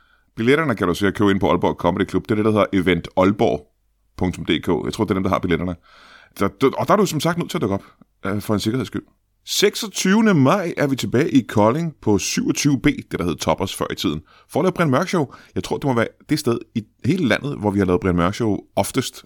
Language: Danish